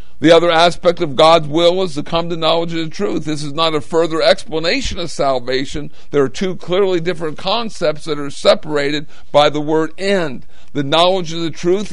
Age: 50-69